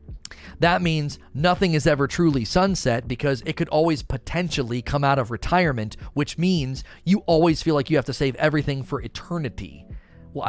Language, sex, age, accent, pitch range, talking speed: English, male, 30-49, American, 125-180 Hz, 170 wpm